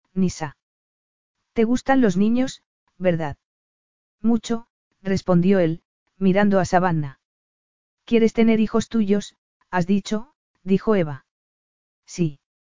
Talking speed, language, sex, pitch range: 100 wpm, Spanish, female, 180-220 Hz